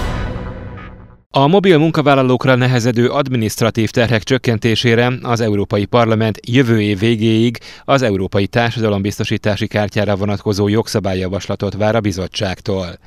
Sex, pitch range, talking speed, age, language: male, 100-120 Hz, 100 wpm, 30-49, Hungarian